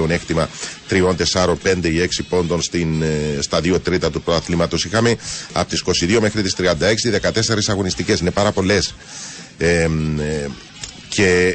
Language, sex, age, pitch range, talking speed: Greek, male, 40-59, 85-105 Hz, 140 wpm